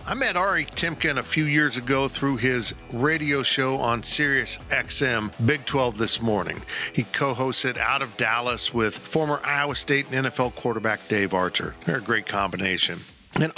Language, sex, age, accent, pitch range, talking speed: English, male, 50-69, American, 115-140 Hz, 170 wpm